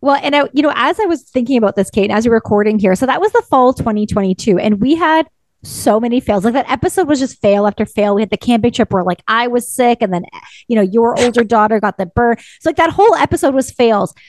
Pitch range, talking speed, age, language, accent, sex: 210-285 Hz, 275 wpm, 30-49, English, American, female